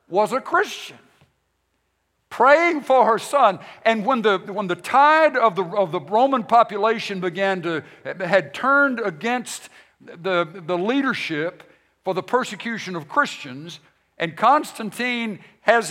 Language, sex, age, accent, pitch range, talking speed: English, male, 60-79, American, 175-230 Hz, 130 wpm